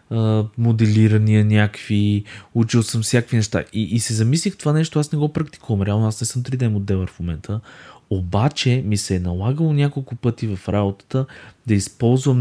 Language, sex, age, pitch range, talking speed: Bulgarian, male, 20-39, 105-130 Hz, 170 wpm